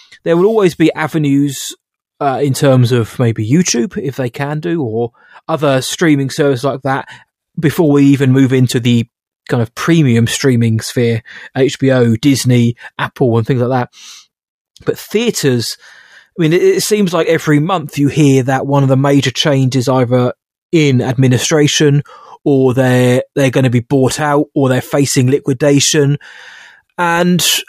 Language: English